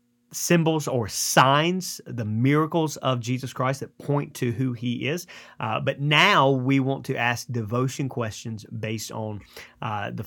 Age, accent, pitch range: 30-49, American, 120-145 Hz